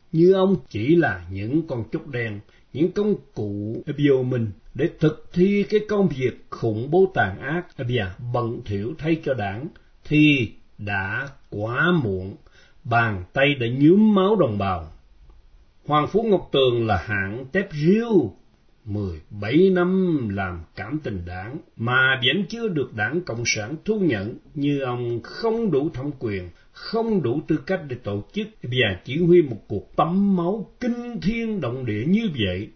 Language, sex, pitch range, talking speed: Vietnamese, male, 110-175 Hz, 165 wpm